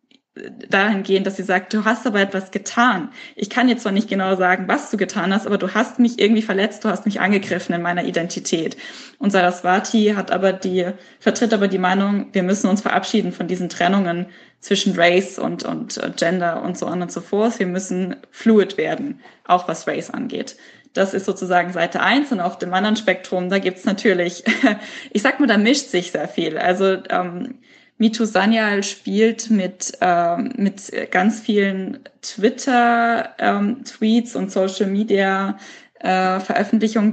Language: German